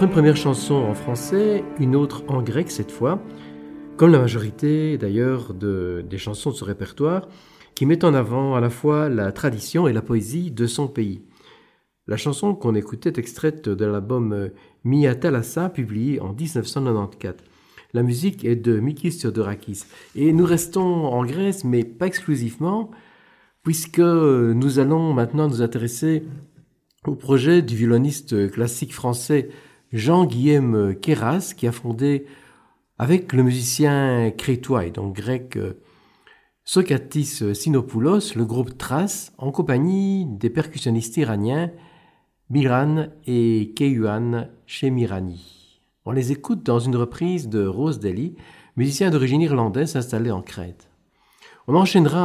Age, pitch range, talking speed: 50-69, 115-155 Hz, 135 wpm